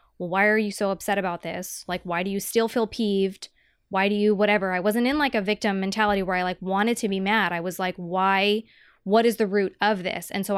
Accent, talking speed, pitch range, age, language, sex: American, 250 wpm, 190-230 Hz, 20-39, English, female